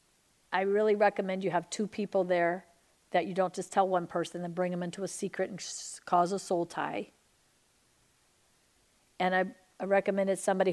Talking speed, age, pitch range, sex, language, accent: 175 wpm, 50-69, 175-200 Hz, female, English, American